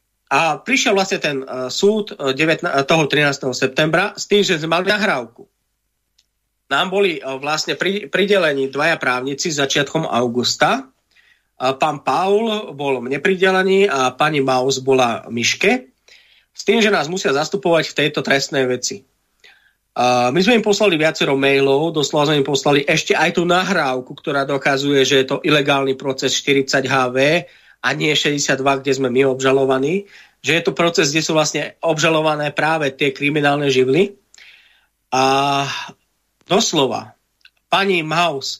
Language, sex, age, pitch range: Slovak, male, 30-49, 135-185 Hz